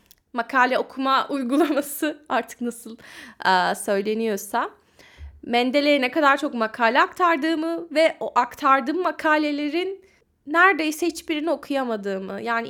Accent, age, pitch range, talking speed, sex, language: native, 10-29, 215-310 Hz, 100 wpm, female, Turkish